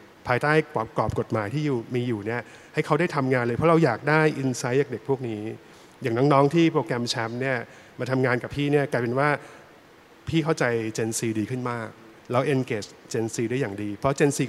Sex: male